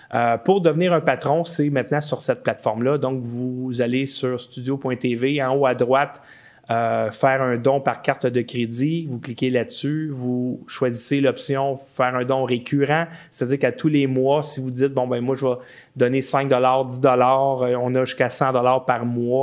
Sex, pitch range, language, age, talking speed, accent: male, 125-145 Hz, French, 30-49, 190 wpm, Canadian